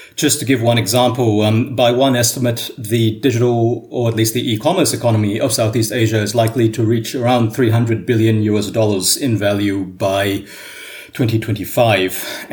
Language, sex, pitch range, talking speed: English, male, 110-135 Hz, 160 wpm